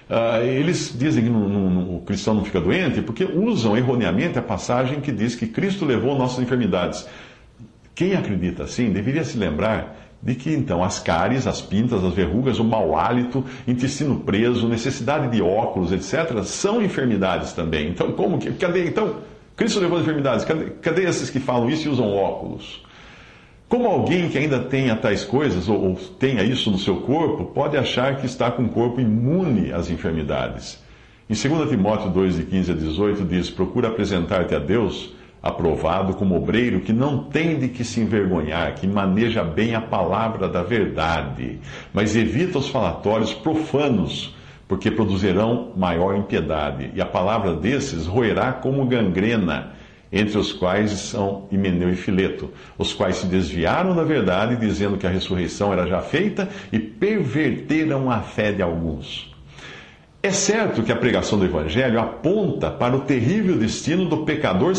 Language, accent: Portuguese, Brazilian